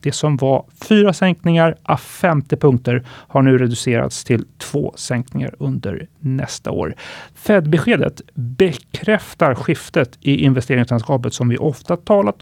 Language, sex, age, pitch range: Swedish, male, 30-49, 125-165 Hz